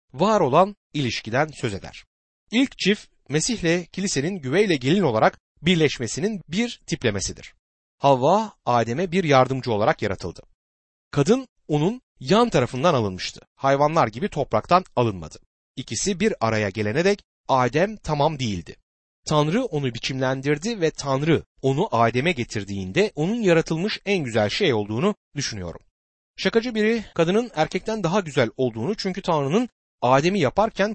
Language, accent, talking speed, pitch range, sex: Turkish, native, 125 wpm, 115-195 Hz, male